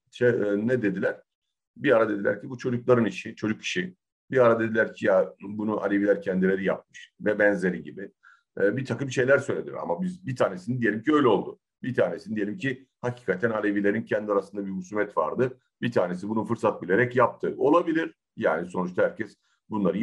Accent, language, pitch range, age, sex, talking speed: native, Turkish, 95-125 Hz, 50-69, male, 175 wpm